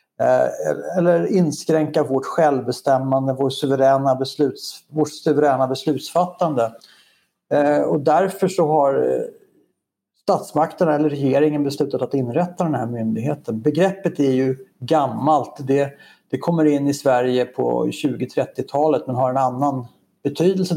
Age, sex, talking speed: 60-79, male, 105 wpm